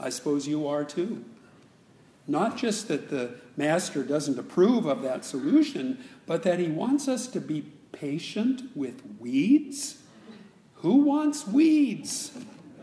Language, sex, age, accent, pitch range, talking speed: English, male, 50-69, American, 155-255 Hz, 130 wpm